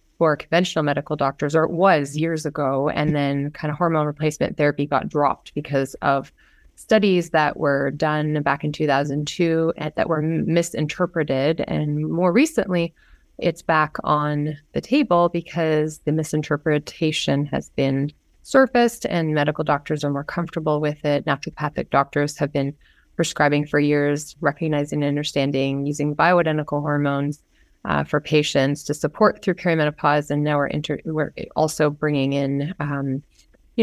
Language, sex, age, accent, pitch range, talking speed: English, female, 30-49, American, 140-160 Hz, 145 wpm